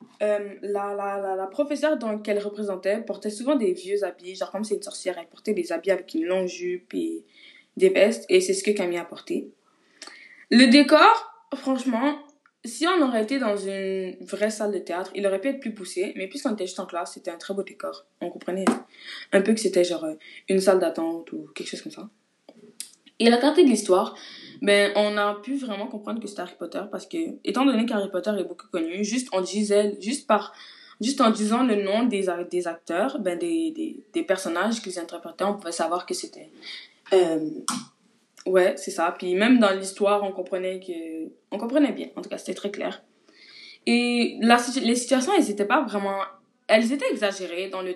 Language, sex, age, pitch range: French, female, 20-39, 190-245 Hz